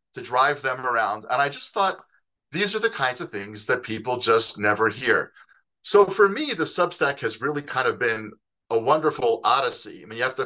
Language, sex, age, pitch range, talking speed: English, male, 40-59, 120-160 Hz, 210 wpm